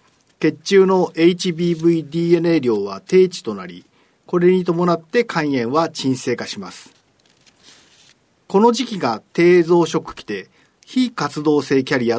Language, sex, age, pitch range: Japanese, male, 50-69, 140-200 Hz